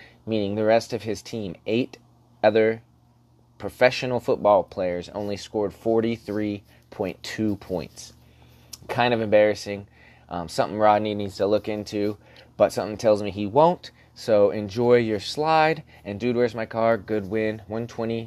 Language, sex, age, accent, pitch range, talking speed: English, male, 20-39, American, 100-120 Hz, 140 wpm